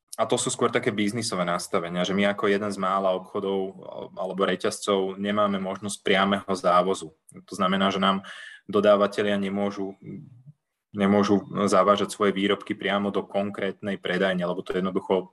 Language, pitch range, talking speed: Slovak, 95-120 Hz, 145 wpm